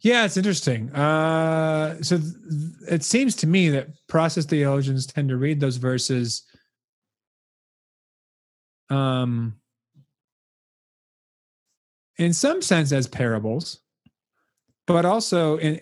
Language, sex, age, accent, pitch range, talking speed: English, male, 30-49, American, 120-155 Hz, 105 wpm